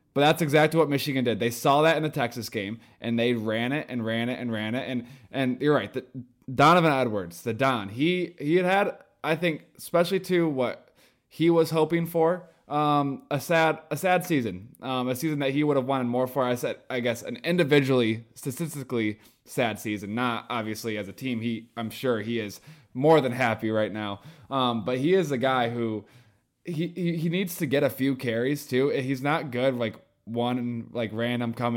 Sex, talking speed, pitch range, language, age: male, 210 wpm, 115-140 Hz, English, 20-39